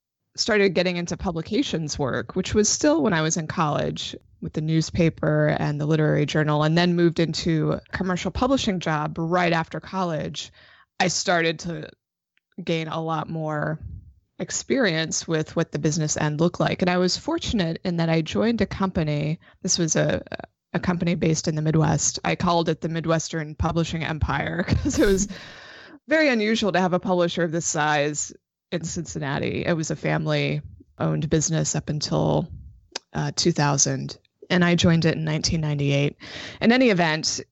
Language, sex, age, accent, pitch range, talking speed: English, female, 20-39, American, 155-180 Hz, 165 wpm